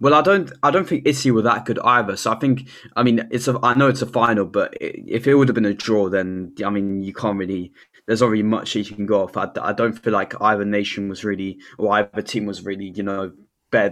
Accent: British